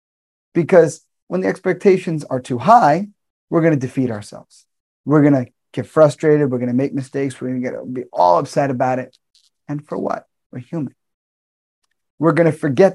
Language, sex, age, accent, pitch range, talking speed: English, male, 30-49, American, 125-160 Hz, 185 wpm